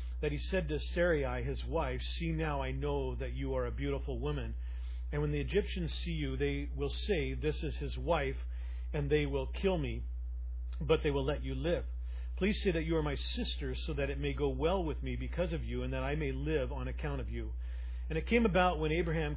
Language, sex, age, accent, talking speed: English, male, 40-59, American, 230 wpm